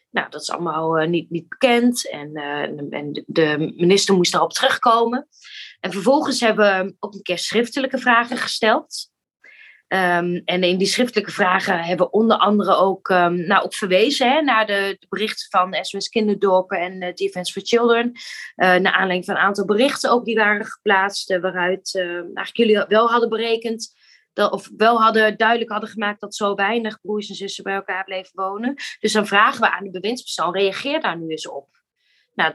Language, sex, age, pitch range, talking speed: Dutch, female, 20-39, 195-235 Hz, 190 wpm